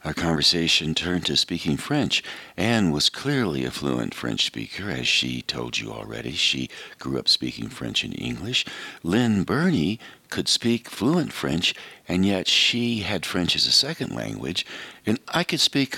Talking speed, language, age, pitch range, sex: 165 wpm, English, 60-79, 70-95 Hz, male